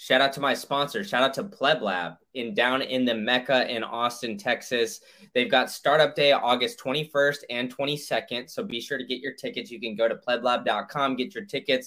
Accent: American